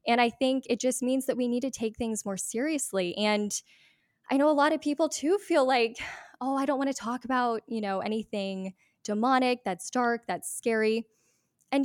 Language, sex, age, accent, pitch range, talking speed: English, female, 10-29, American, 195-250 Hz, 205 wpm